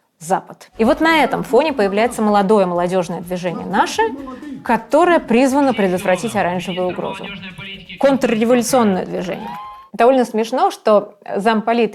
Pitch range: 190-245 Hz